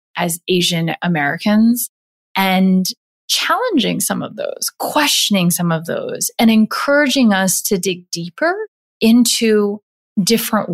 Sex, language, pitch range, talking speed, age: female, English, 180-225 Hz, 110 wpm, 20-39